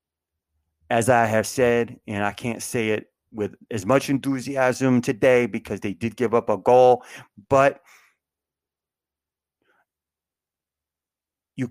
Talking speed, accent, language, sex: 120 wpm, American, English, male